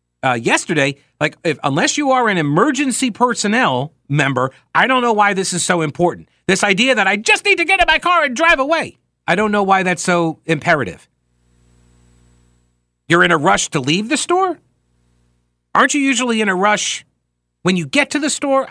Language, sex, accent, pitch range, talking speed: English, male, American, 120-195 Hz, 190 wpm